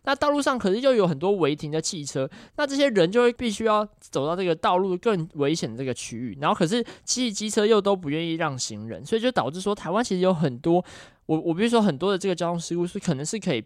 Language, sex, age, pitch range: Chinese, male, 20-39, 150-215 Hz